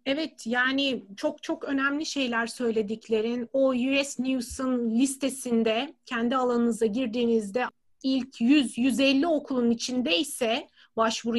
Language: Turkish